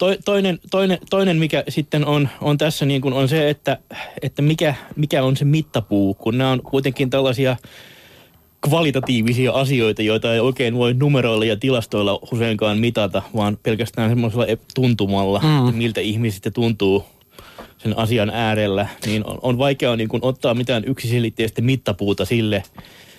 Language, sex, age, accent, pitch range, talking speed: Finnish, male, 20-39, native, 110-135 Hz, 150 wpm